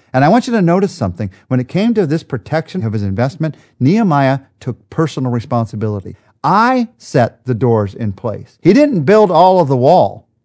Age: 50-69